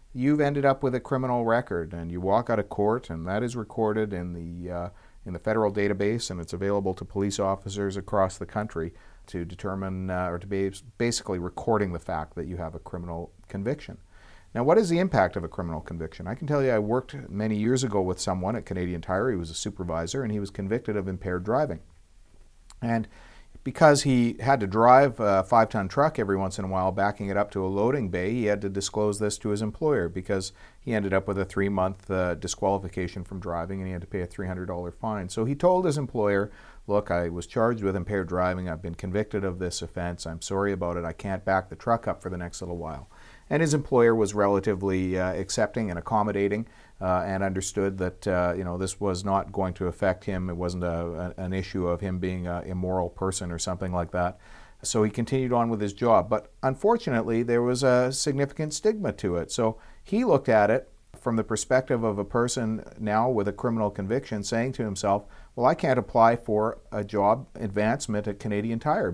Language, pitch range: English, 90-115 Hz